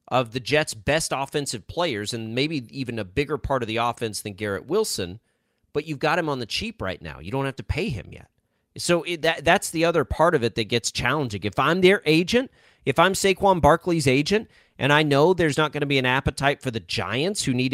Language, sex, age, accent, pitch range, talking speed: English, male, 30-49, American, 110-145 Hz, 235 wpm